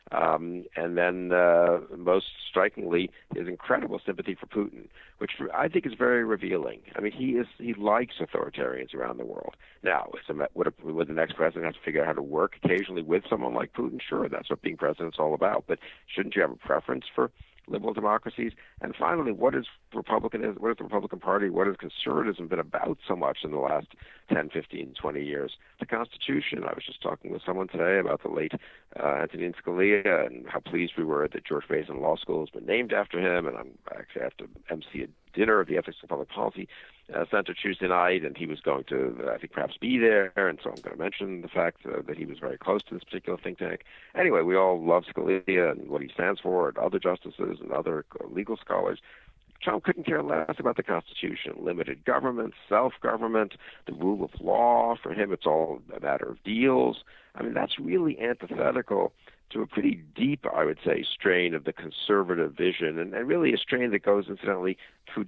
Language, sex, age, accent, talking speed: English, male, 60-79, American, 215 wpm